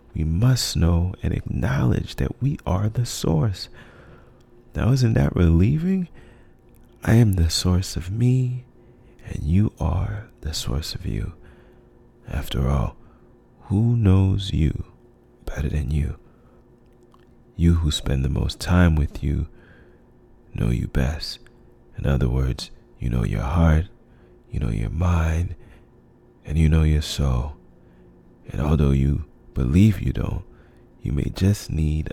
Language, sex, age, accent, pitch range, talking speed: English, male, 30-49, American, 75-105 Hz, 135 wpm